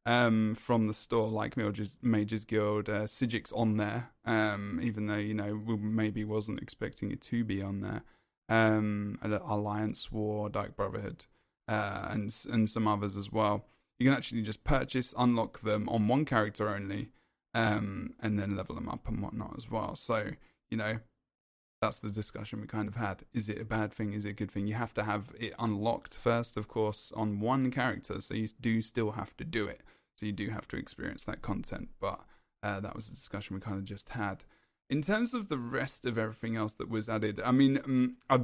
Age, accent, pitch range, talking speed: 10-29, British, 105-120 Hz, 210 wpm